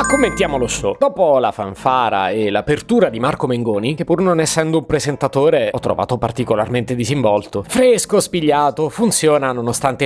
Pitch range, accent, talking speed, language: 115-170 Hz, native, 160 wpm, Italian